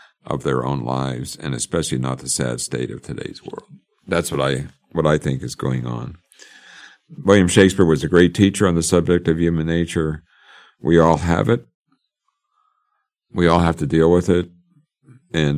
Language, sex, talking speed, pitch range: English, male, 175 wpm, 65-85 Hz